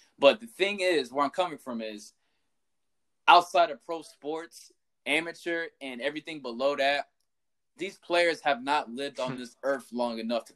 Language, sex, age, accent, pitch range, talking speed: English, male, 20-39, American, 130-190 Hz, 165 wpm